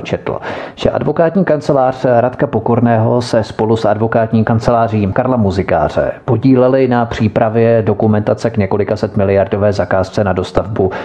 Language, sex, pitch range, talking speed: Czech, male, 105-120 Hz, 130 wpm